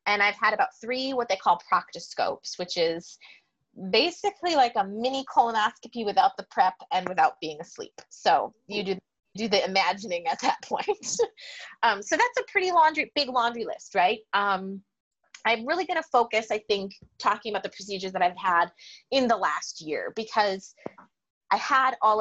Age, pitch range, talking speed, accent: 20-39, 180-255 Hz, 175 wpm, American